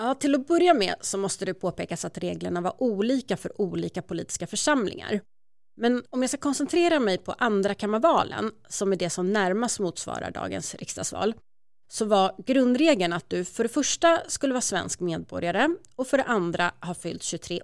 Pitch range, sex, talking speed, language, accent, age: 185-260 Hz, female, 180 wpm, Swedish, native, 30-49